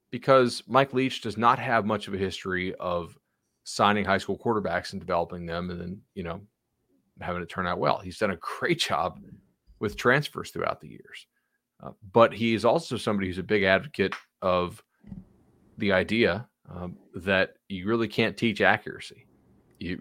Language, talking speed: English, 175 wpm